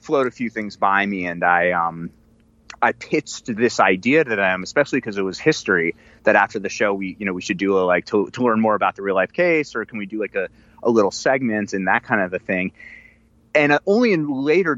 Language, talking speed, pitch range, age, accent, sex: English, 250 wpm, 100-140 Hz, 30-49, American, male